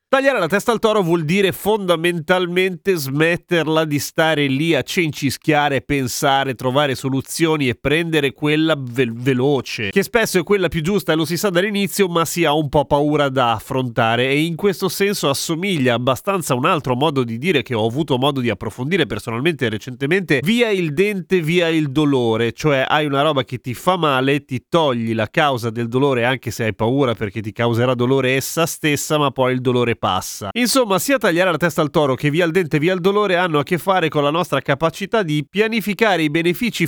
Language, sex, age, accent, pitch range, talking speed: Italian, male, 30-49, native, 135-185 Hz, 200 wpm